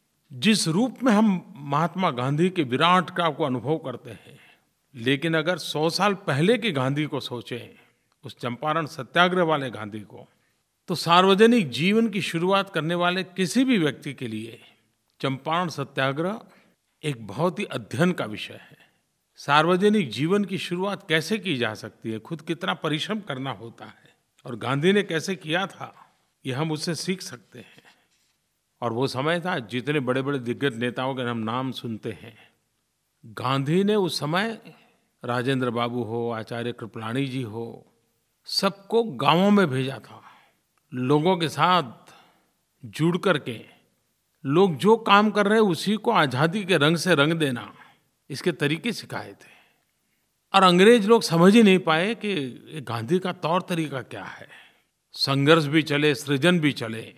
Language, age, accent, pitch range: Hindi, 50-69, native, 130-185 Hz